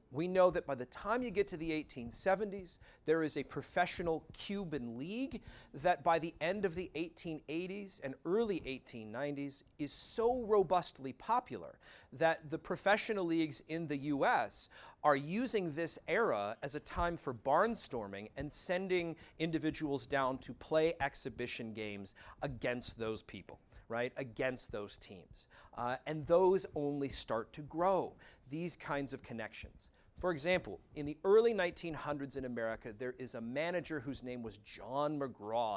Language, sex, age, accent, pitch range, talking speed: English, male, 40-59, American, 125-170 Hz, 150 wpm